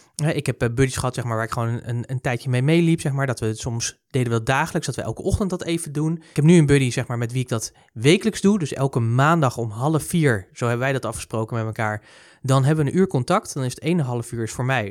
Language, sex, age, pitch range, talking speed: Dutch, male, 20-39, 120-160 Hz, 290 wpm